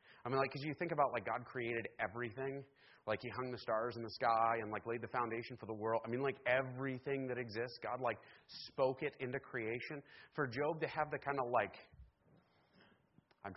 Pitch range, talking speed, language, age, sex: 115-145 Hz, 210 wpm, English, 30-49, male